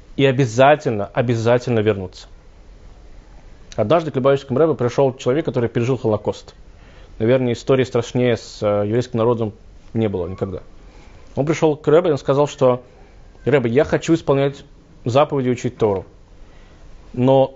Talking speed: 130 wpm